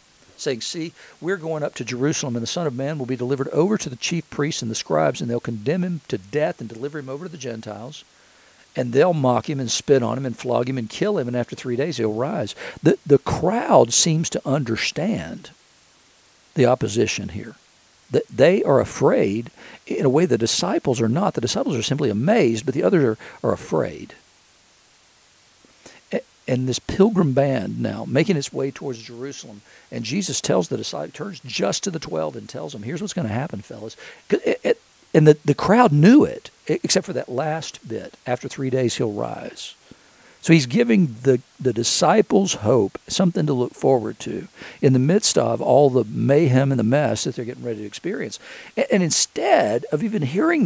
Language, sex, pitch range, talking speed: English, male, 125-165 Hz, 195 wpm